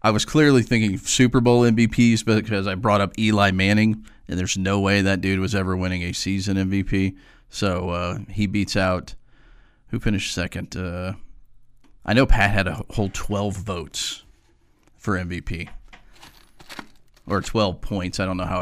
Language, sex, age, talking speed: English, male, 30-49, 165 wpm